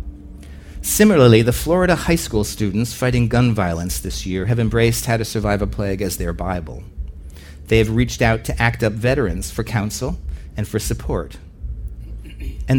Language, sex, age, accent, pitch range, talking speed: English, male, 40-59, American, 100-120 Hz, 165 wpm